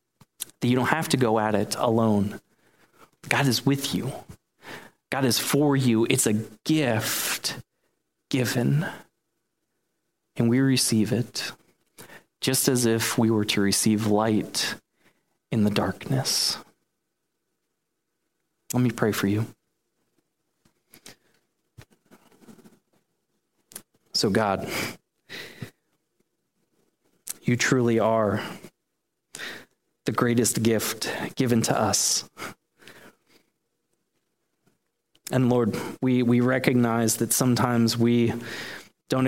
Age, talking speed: 30-49, 95 wpm